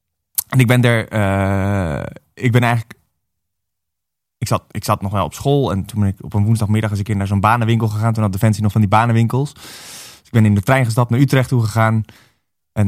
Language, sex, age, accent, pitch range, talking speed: Dutch, male, 20-39, Dutch, 95-120 Hz, 235 wpm